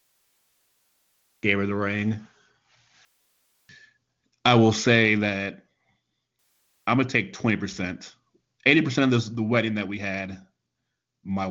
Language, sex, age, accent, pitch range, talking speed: English, male, 30-49, American, 95-120 Hz, 110 wpm